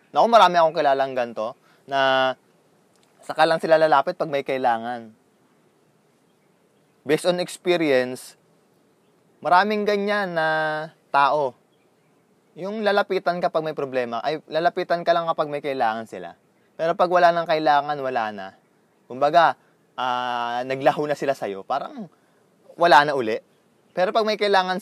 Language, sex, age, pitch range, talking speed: Filipino, male, 20-39, 135-180 Hz, 135 wpm